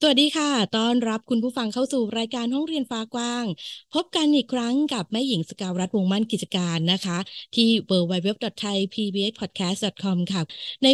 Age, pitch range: 20-39, 195-245 Hz